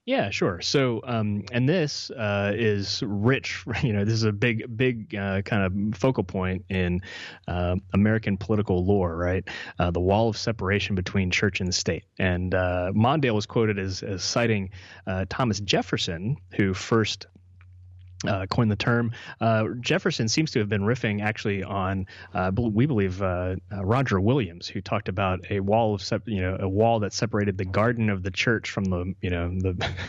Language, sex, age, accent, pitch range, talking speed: English, male, 30-49, American, 95-110 Hz, 185 wpm